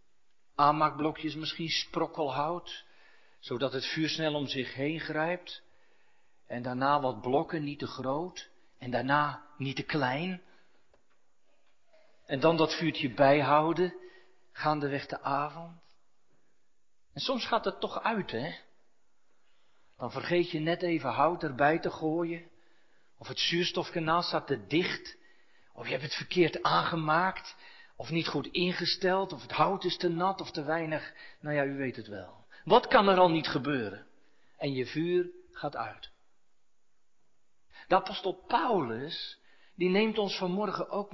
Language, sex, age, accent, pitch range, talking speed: Dutch, male, 40-59, Dutch, 145-185 Hz, 140 wpm